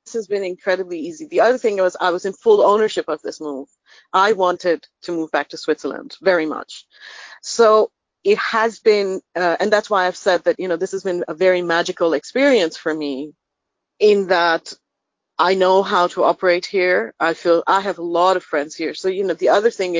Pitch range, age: 175-225 Hz, 40-59